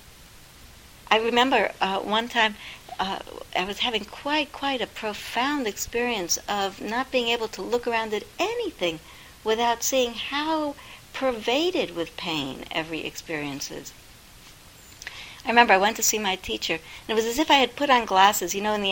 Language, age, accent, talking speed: English, 60-79, American, 170 wpm